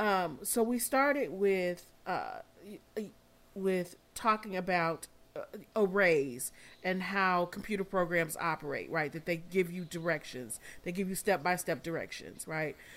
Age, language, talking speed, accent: 40-59, English, 125 wpm, American